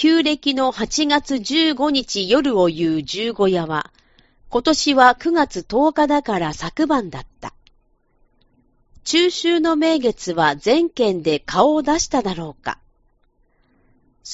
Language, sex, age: Japanese, female, 40-59